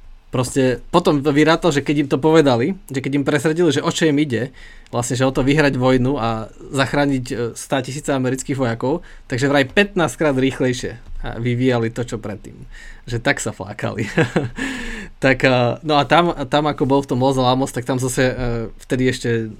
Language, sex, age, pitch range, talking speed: Slovak, male, 20-39, 125-150 Hz, 175 wpm